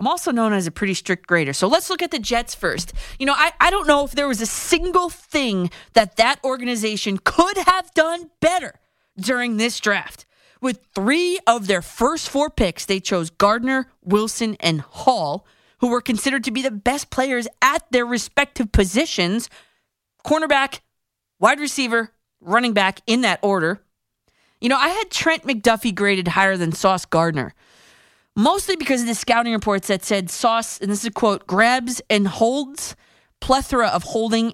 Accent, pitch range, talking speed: American, 190-260 Hz, 175 wpm